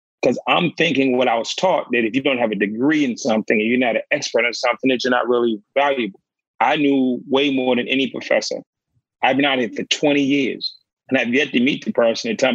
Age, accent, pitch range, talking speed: 30-49, American, 115-135 Hz, 245 wpm